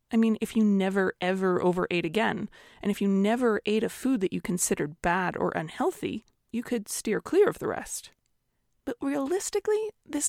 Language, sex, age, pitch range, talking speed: English, female, 30-49, 195-275 Hz, 180 wpm